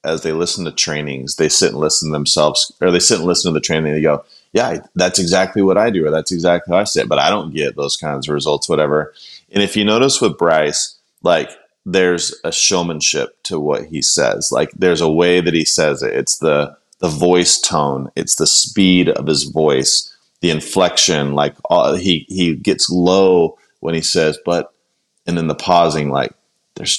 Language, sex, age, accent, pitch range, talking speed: English, male, 30-49, American, 75-95 Hz, 210 wpm